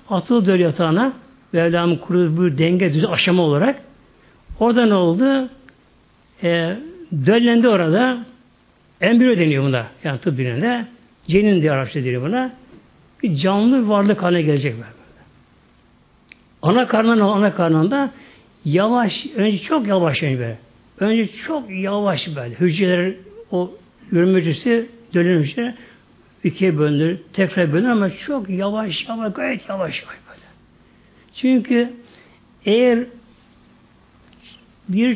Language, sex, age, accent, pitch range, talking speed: Turkish, male, 60-79, native, 170-240 Hz, 110 wpm